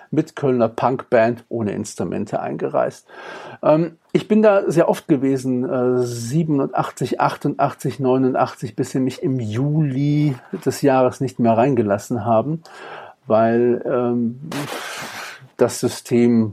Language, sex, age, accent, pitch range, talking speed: German, male, 50-69, German, 120-150 Hz, 115 wpm